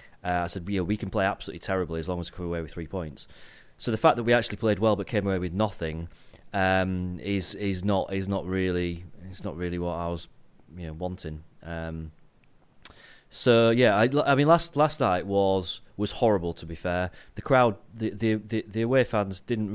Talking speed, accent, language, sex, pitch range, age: 215 wpm, British, English, male, 95-110 Hz, 30-49